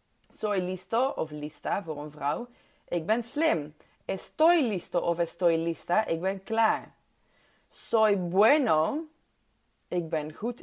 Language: Dutch